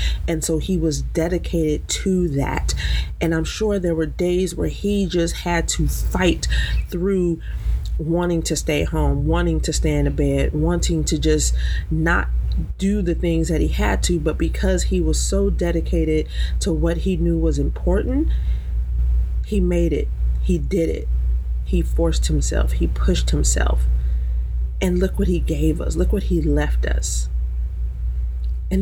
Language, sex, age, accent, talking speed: English, female, 30-49, American, 160 wpm